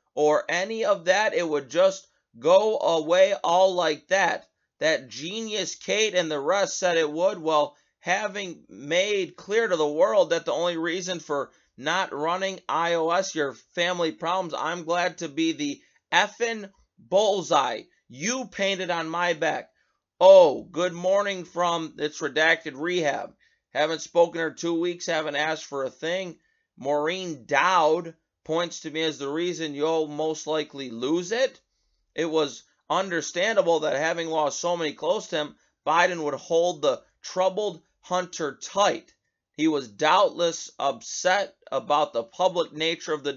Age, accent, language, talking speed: 30-49, American, English, 150 wpm